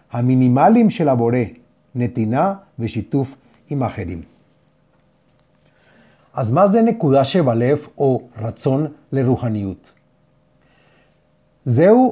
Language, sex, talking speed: Hebrew, male, 80 wpm